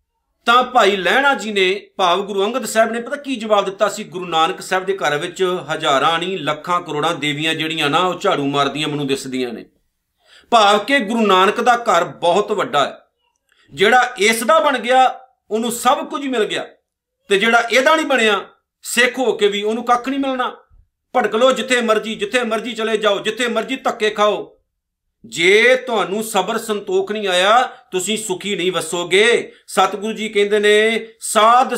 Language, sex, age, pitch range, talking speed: Punjabi, male, 50-69, 160-220 Hz, 165 wpm